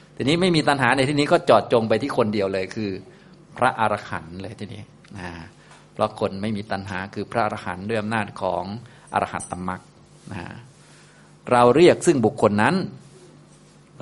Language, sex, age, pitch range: Thai, male, 20-39, 100-125 Hz